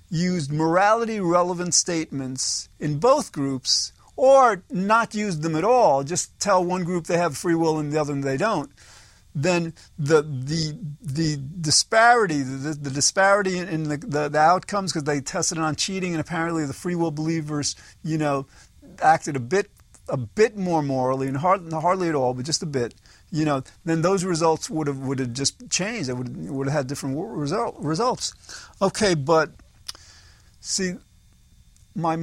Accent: American